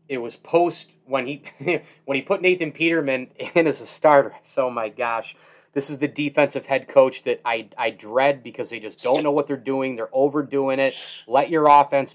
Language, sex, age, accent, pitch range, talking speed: English, male, 30-49, American, 140-175 Hz, 200 wpm